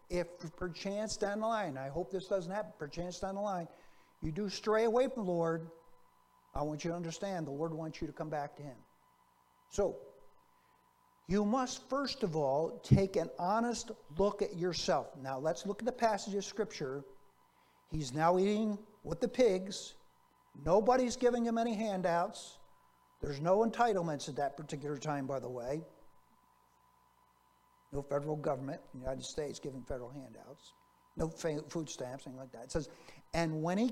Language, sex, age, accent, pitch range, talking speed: English, male, 60-79, American, 160-230 Hz, 170 wpm